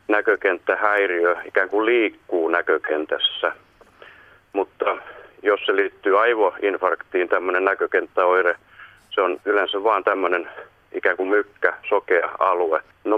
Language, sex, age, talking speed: Finnish, male, 40-59, 105 wpm